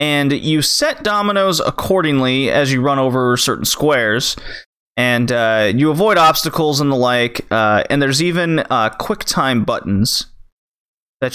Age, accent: 30-49, American